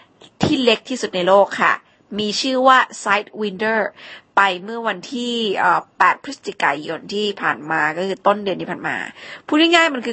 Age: 20-39